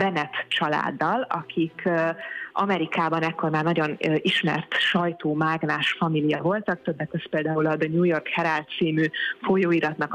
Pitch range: 160-185 Hz